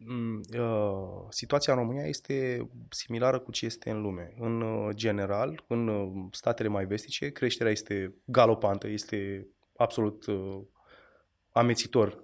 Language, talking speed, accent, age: Romanian, 110 wpm, native, 20-39